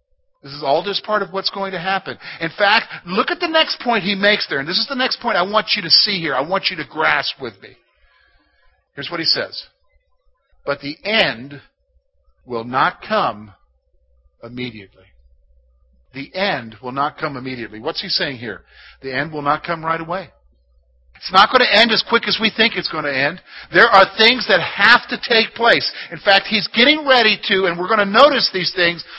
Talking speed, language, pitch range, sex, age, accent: 210 wpm, English, 145-225 Hz, male, 50-69, American